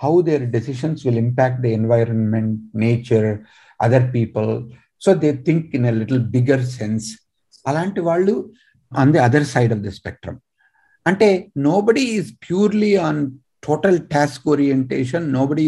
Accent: native